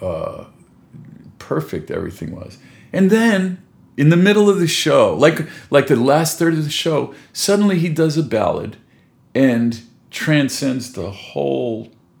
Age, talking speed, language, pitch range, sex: 50-69, 145 wpm, English, 105-150 Hz, male